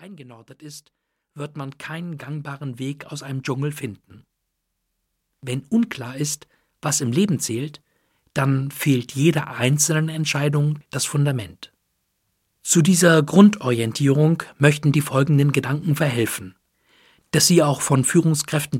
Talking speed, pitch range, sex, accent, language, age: 120 wpm, 135-160 Hz, male, German, German, 50-69